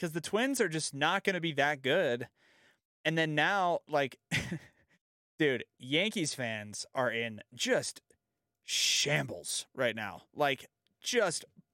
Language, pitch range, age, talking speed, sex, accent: English, 120-170 Hz, 20-39, 135 wpm, male, American